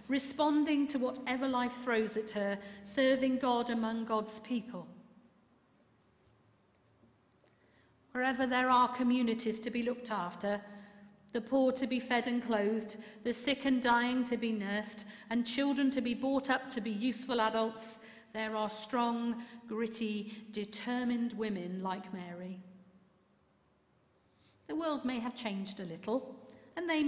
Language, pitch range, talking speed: English, 205-250 Hz, 135 wpm